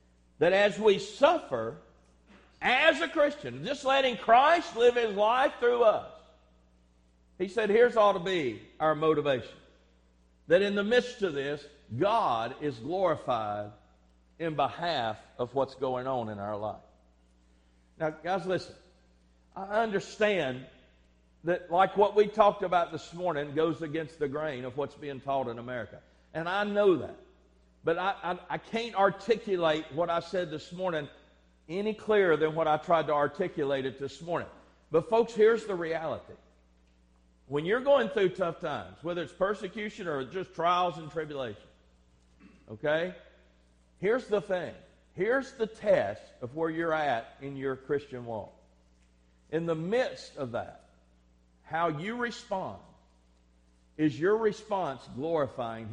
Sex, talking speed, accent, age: male, 145 wpm, American, 50-69